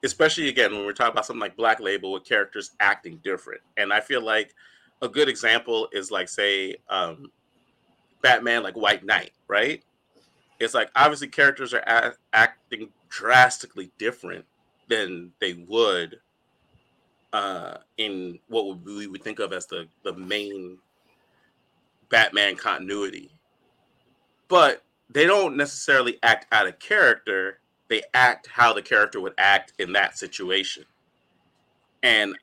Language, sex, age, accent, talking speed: English, male, 30-49, American, 135 wpm